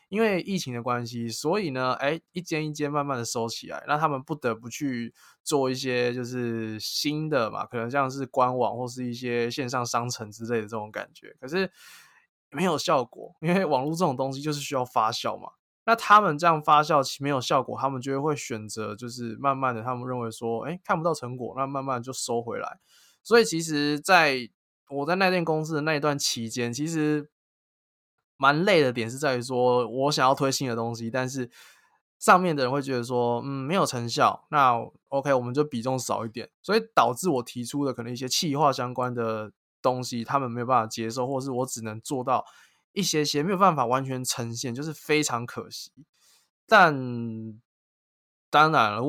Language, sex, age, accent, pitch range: Chinese, male, 20-39, native, 120-150 Hz